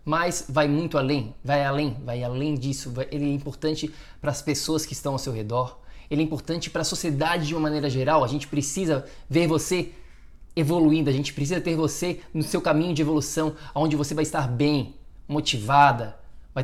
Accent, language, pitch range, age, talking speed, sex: Brazilian, Portuguese, 140-165 Hz, 20-39, 190 wpm, male